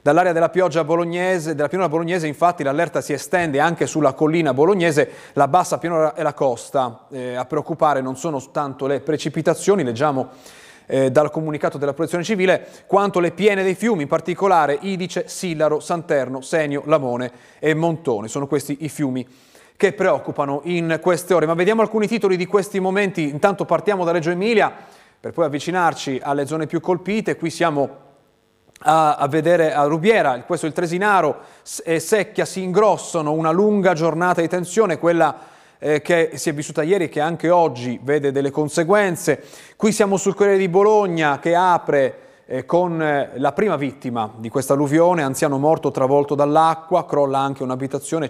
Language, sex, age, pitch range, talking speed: Italian, male, 30-49, 135-175 Hz, 165 wpm